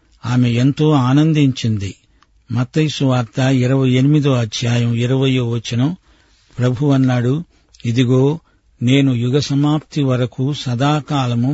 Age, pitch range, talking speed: 50-69, 125-140 Hz, 90 wpm